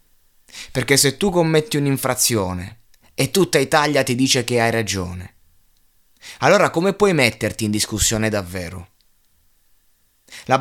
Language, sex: Italian, male